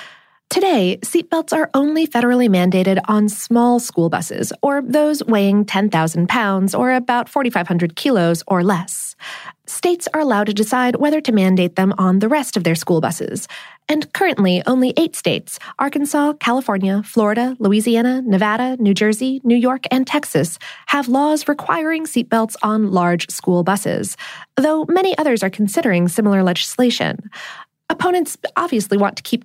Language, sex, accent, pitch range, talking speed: English, female, American, 205-295 Hz, 145 wpm